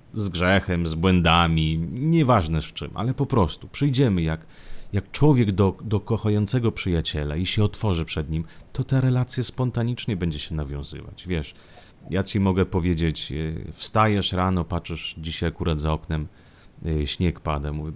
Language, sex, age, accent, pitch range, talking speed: Italian, male, 30-49, Polish, 80-110 Hz, 150 wpm